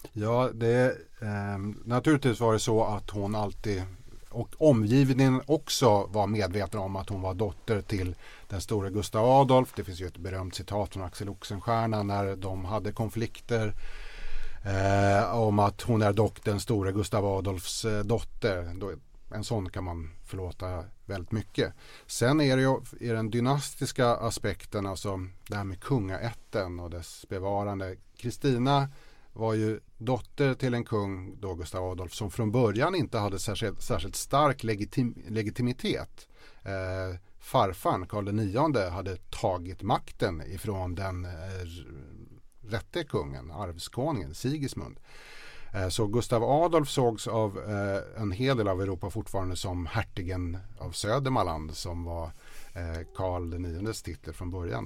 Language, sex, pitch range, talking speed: Swedish, male, 95-120 Hz, 140 wpm